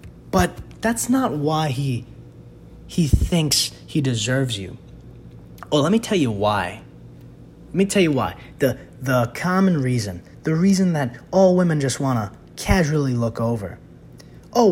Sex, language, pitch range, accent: male, English, 110-170 Hz, American